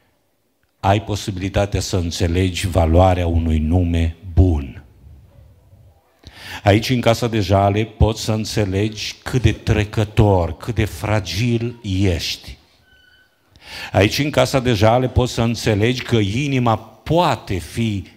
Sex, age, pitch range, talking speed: male, 50-69, 95-115 Hz, 115 wpm